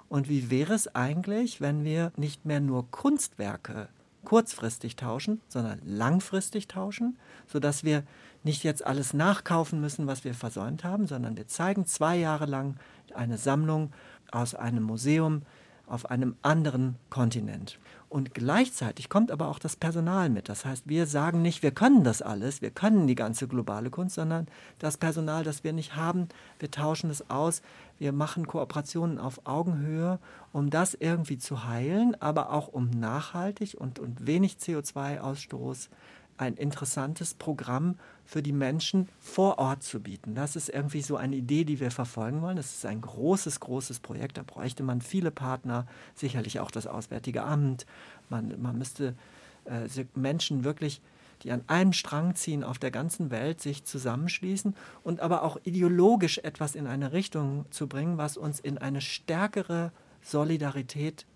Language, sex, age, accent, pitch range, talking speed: German, male, 50-69, German, 130-165 Hz, 160 wpm